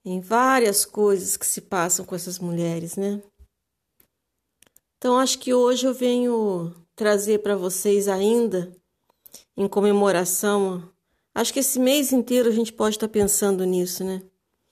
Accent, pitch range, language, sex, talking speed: Brazilian, 190-235 Hz, Portuguese, female, 145 wpm